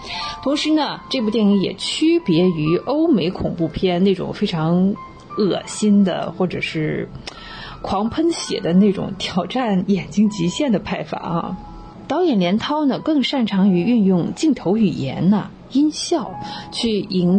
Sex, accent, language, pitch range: female, native, Chinese, 180-235 Hz